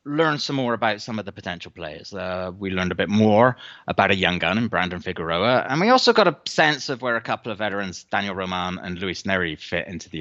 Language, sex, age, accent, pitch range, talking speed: English, male, 30-49, British, 90-130 Hz, 245 wpm